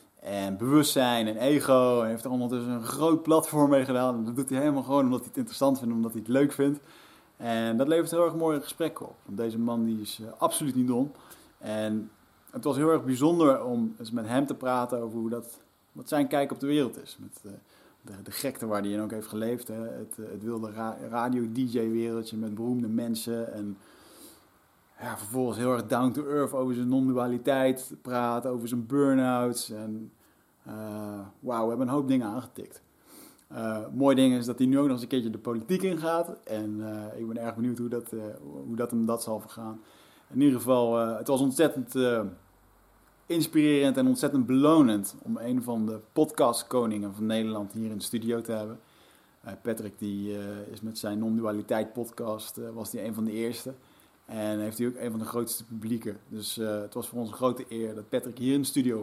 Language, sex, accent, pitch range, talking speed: Dutch, male, Dutch, 110-130 Hz, 210 wpm